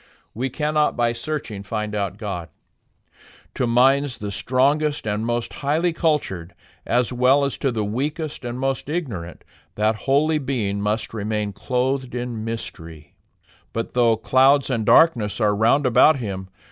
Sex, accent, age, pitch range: male, American, 50-69, 95-135 Hz